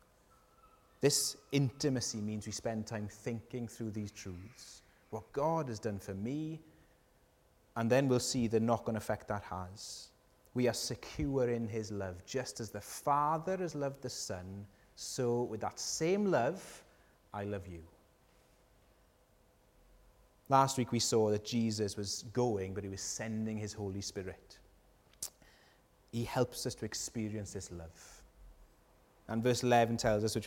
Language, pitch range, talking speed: English, 105-125 Hz, 150 wpm